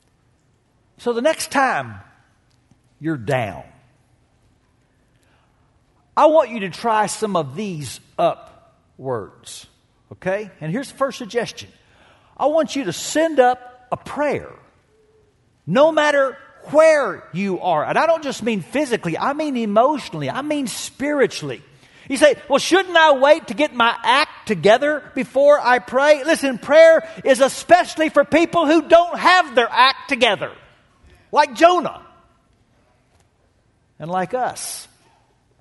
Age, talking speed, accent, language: 50-69, 130 wpm, American, English